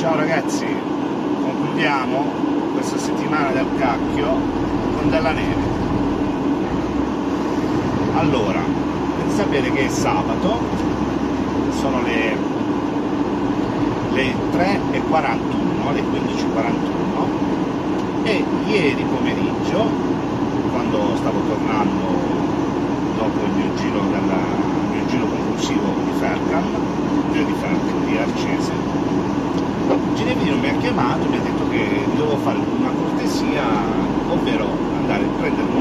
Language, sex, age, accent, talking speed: Italian, male, 40-59, native, 105 wpm